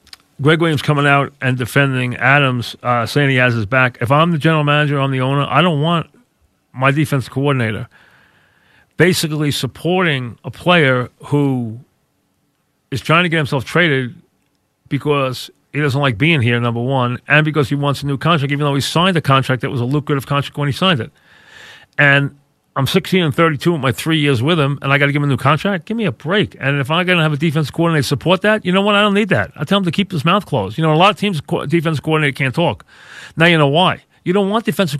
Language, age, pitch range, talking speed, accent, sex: English, 40-59, 135-180 Hz, 235 wpm, American, male